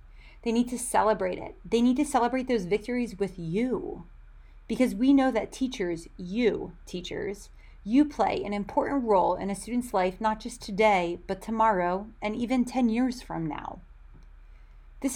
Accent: American